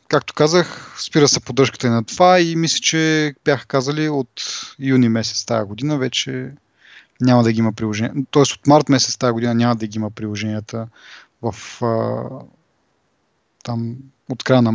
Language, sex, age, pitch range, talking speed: Bulgarian, male, 30-49, 115-140 Hz, 165 wpm